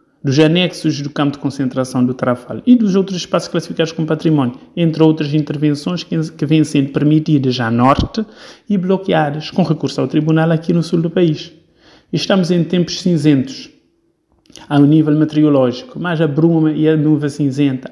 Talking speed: 165 wpm